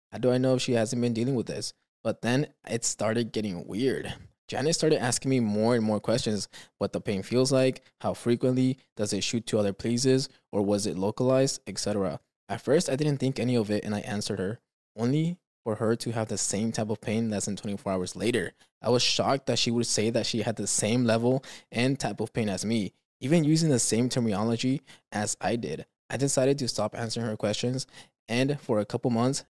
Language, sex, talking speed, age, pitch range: English, male, 220 wpm, 20-39, 105-125 Hz